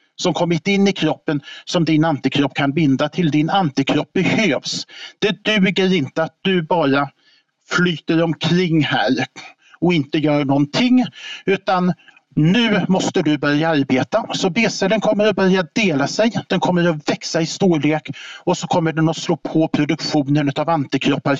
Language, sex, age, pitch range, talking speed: Swedish, male, 50-69, 145-175 Hz, 160 wpm